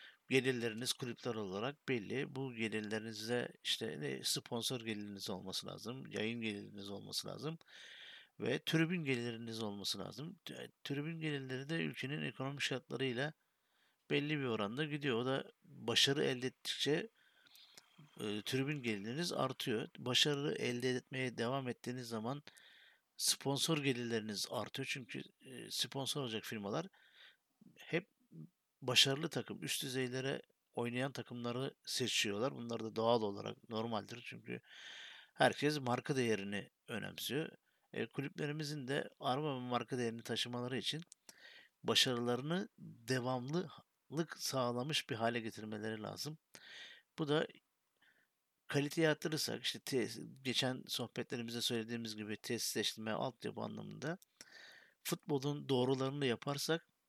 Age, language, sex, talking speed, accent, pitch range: 60-79, Turkish, male, 105 wpm, native, 115-145 Hz